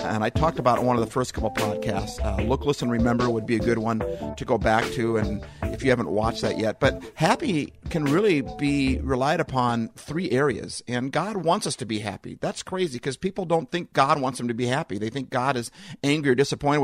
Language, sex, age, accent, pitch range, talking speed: English, male, 50-69, American, 115-155 Hz, 230 wpm